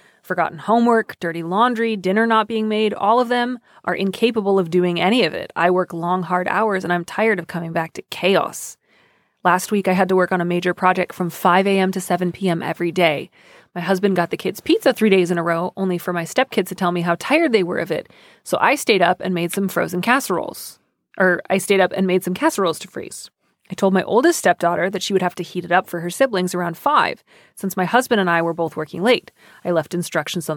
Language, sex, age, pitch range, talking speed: English, female, 30-49, 180-220 Hz, 240 wpm